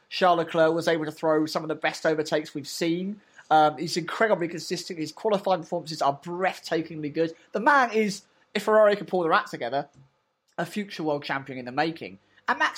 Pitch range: 155-205 Hz